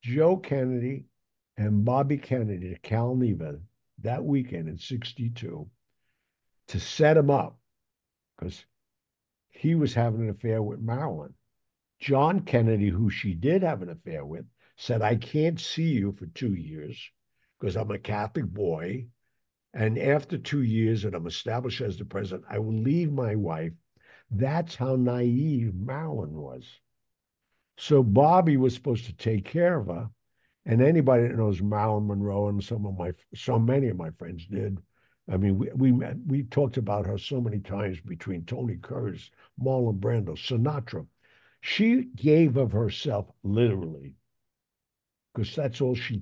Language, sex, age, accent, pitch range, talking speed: English, male, 60-79, American, 100-135 Hz, 155 wpm